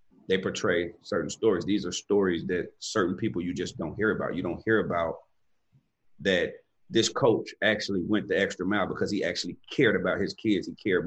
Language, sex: English, male